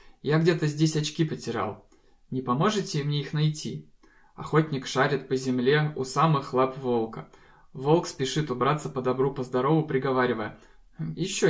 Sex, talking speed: male, 140 wpm